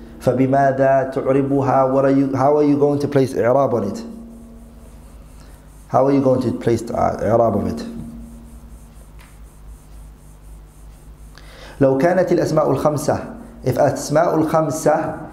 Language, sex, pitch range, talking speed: English, male, 110-145 Hz, 115 wpm